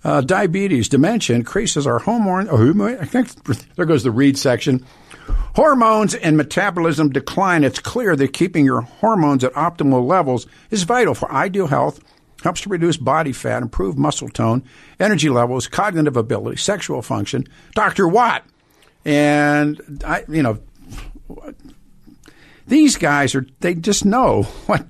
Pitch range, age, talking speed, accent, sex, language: 130-170 Hz, 60-79, 140 wpm, American, male, English